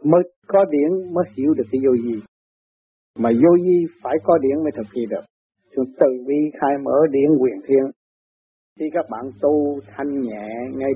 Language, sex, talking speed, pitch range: Vietnamese, male, 175 wpm, 120-150 Hz